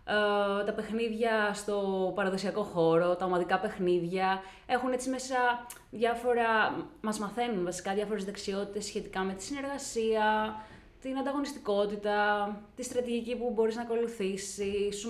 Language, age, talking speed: Greek, 20-39, 120 wpm